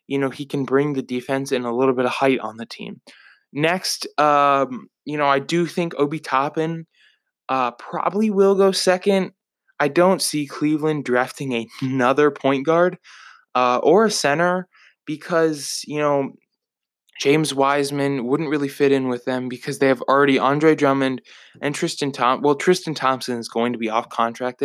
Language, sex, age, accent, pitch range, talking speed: English, male, 20-39, American, 125-155 Hz, 175 wpm